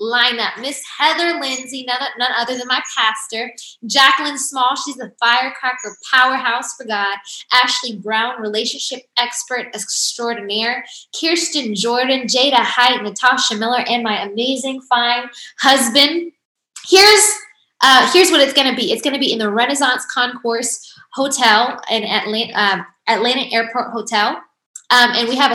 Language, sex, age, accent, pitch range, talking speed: English, female, 20-39, American, 225-265 Hz, 140 wpm